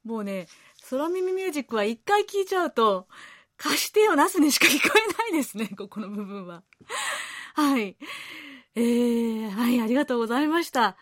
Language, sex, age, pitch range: Japanese, female, 30-49, 220-325 Hz